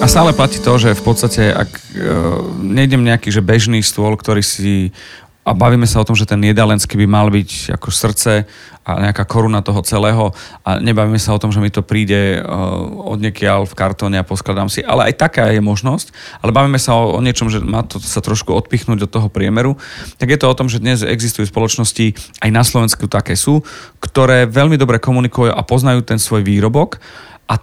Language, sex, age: Slovak, male, 40-59